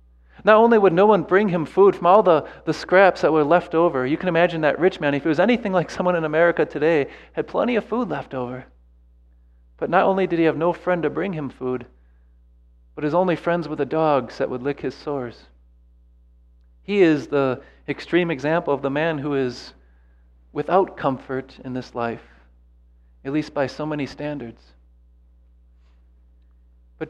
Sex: male